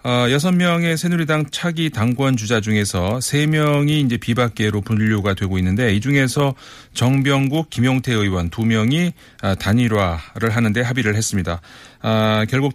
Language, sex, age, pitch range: Korean, male, 40-59, 105-140 Hz